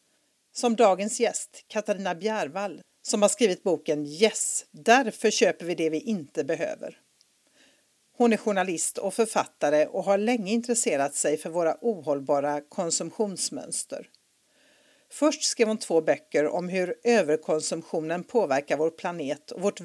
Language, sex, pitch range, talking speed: Swedish, female, 160-225 Hz, 135 wpm